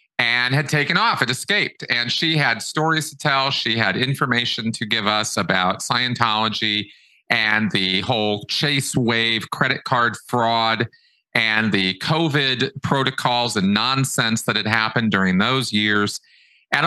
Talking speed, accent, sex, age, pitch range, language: 145 wpm, American, male, 40-59, 115-160 Hz, English